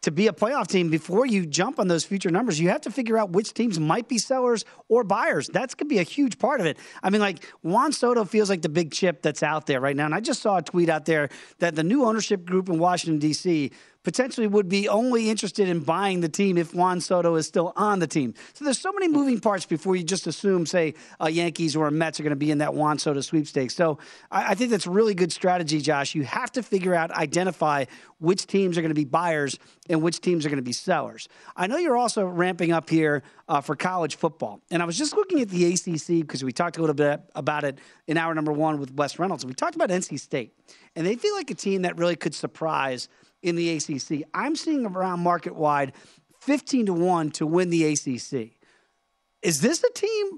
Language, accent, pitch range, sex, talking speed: English, American, 160-220 Hz, male, 245 wpm